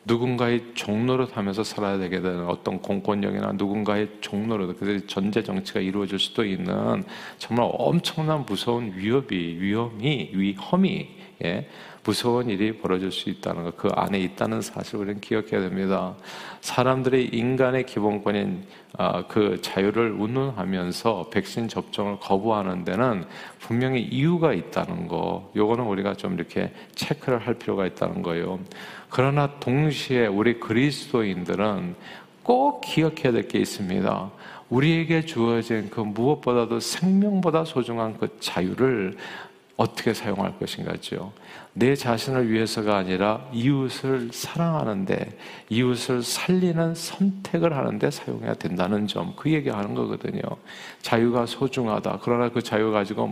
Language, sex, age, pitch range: Korean, male, 40-59, 100-130 Hz